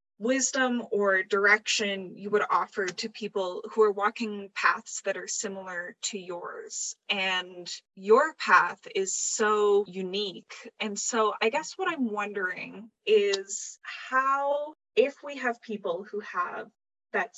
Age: 10-29